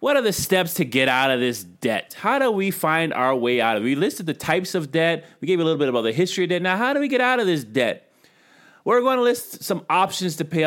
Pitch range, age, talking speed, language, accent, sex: 125-175 Hz, 30-49, 285 wpm, English, American, male